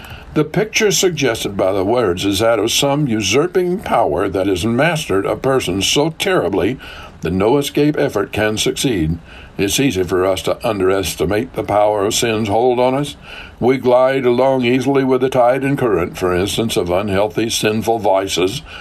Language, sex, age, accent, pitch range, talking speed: English, male, 60-79, American, 105-145 Hz, 170 wpm